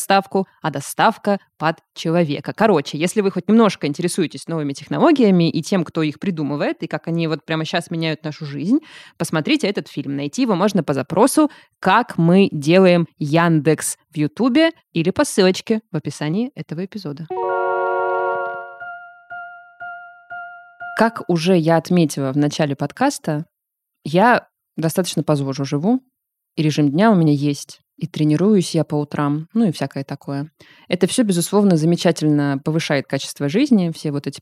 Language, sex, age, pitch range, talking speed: Russian, female, 20-39, 150-200 Hz, 145 wpm